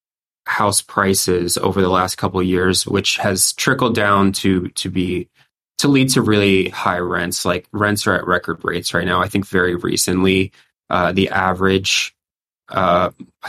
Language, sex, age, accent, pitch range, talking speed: English, male, 20-39, American, 95-110 Hz, 165 wpm